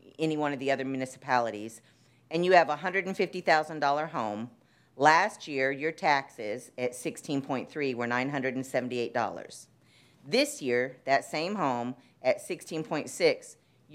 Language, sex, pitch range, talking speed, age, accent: English, female, 125-160 Hz, 115 wpm, 50-69, American